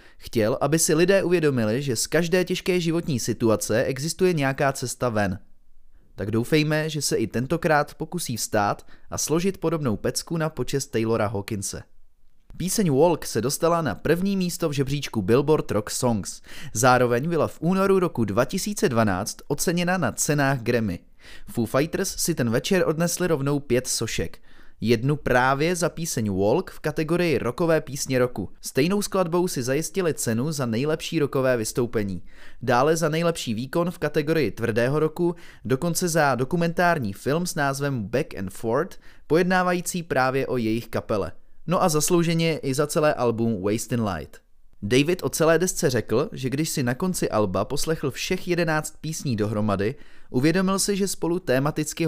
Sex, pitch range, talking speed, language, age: male, 115-165 Hz, 155 wpm, Czech, 20-39